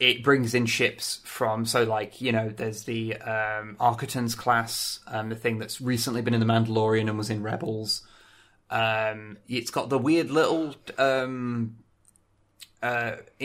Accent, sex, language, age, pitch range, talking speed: British, male, English, 20-39, 105-125 Hz, 155 wpm